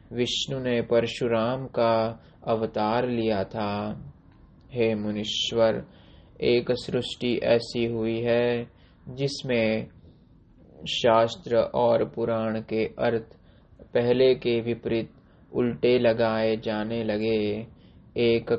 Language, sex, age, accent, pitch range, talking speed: Hindi, male, 20-39, native, 110-120 Hz, 90 wpm